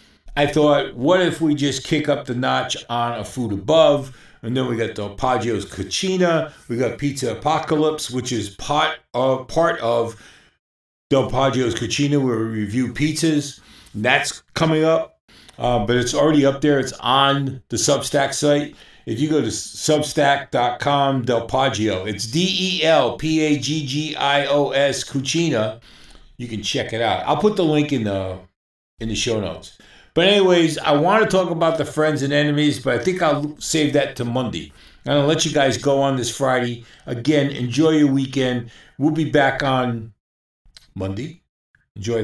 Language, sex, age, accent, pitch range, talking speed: English, male, 50-69, American, 115-150 Hz, 165 wpm